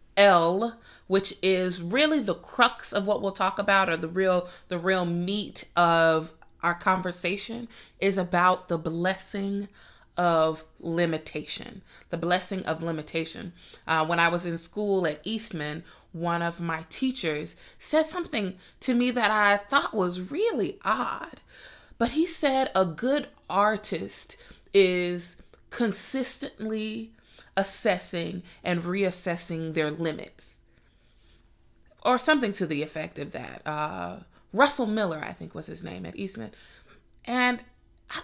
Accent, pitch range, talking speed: American, 170-225 Hz, 130 wpm